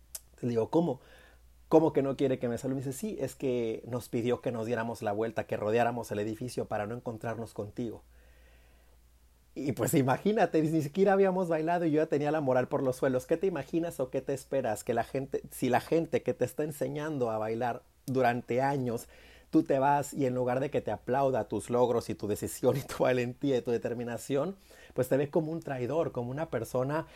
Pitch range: 115-140 Hz